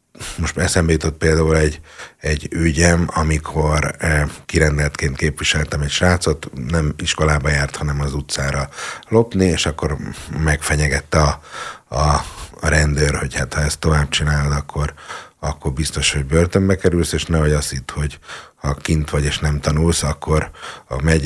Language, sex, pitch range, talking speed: Hungarian, male, 75-85 Hz, 145 wpm